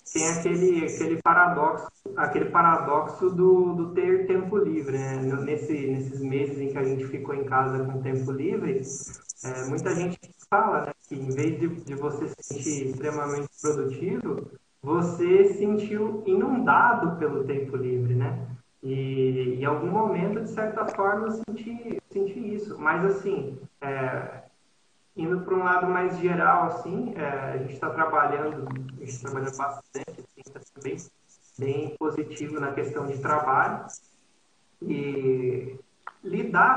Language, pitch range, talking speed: Portuguese, 135-180 Hz, 145 wpm